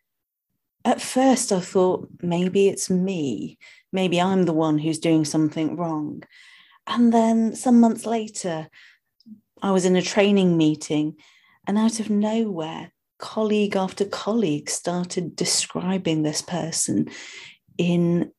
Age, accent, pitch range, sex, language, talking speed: 40-59, British, 175-230 Hz, female, English, 125 wpm